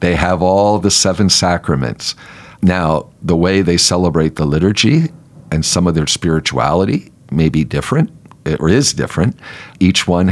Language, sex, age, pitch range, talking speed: English, male, 50-69, 80-100 Hz, 150 wpm